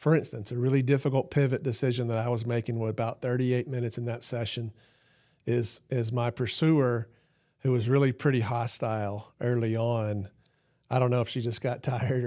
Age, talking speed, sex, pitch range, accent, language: 40-59, 180 wpm, male, 115-135 Hz, American, English